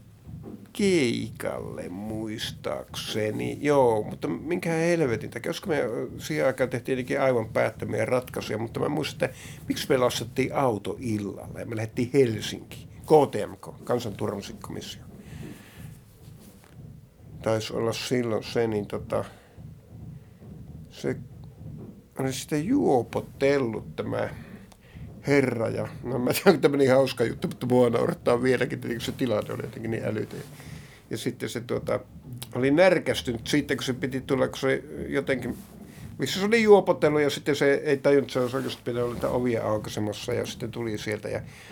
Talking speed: 135 wpm